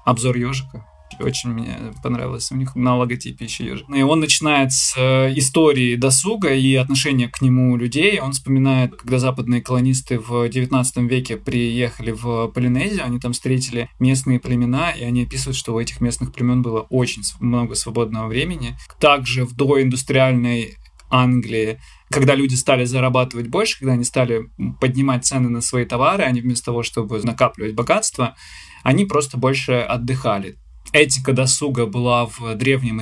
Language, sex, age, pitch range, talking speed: Russian, male, 20-39, 120-135 Hz, 150 wpm